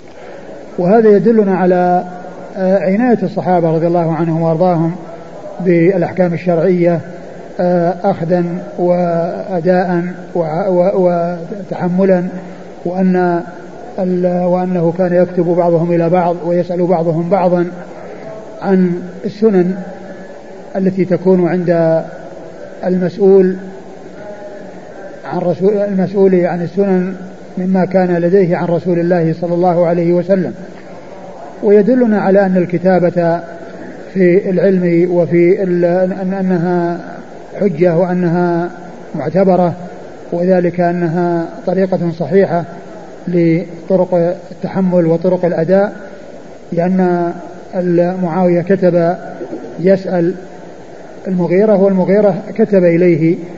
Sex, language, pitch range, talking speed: male, Arabic, 175-190 Hz, 80 wpm